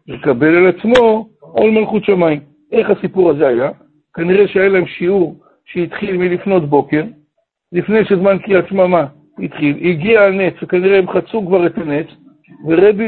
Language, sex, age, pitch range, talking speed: Hebrew, male, 60-79, 160-200 Hz, 140 wpm